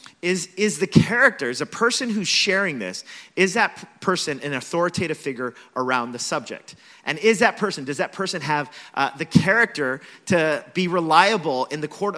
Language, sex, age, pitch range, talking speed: English, male, 30-49, 145-190 Hz, 180 wpm